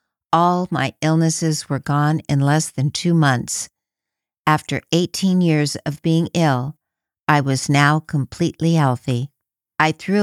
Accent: American